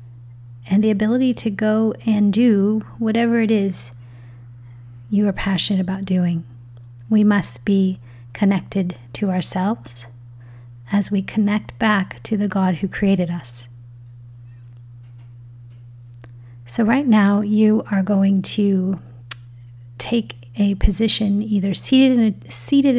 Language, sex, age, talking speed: English, female, 30-49, 110 wpm